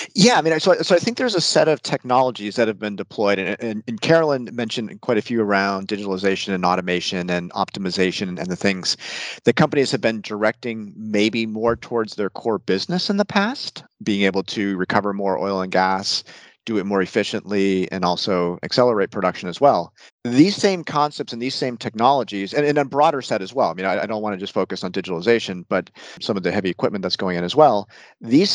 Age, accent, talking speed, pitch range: 40-59, American, 215 wpm, 100-125 Hz